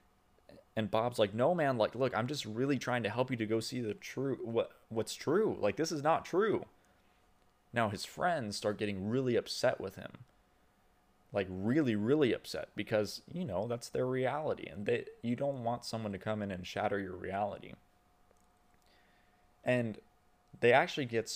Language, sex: English, male